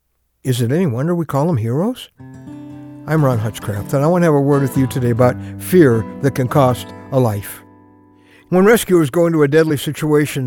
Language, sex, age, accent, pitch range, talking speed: English, male, 60-79, American, 130-210 Hz, 200 wpm